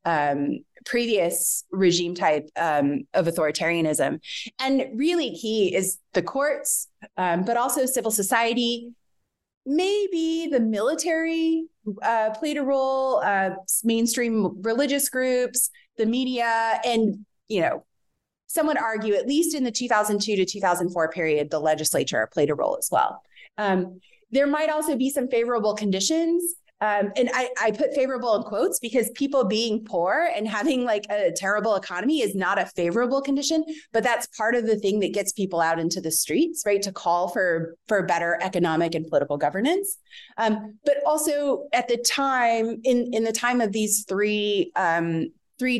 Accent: American